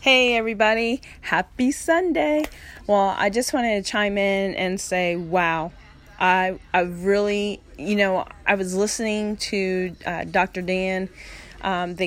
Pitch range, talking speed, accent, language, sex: 180-210 Hz, 140 wpm, American, English, female